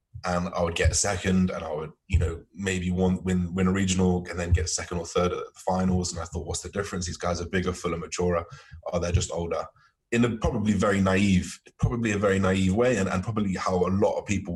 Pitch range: 90-100 Hz